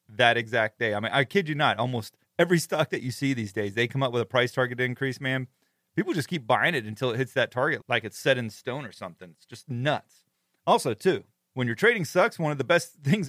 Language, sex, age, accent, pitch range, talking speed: English, male, 30-49, American, 115-155 Hz, 260 wpm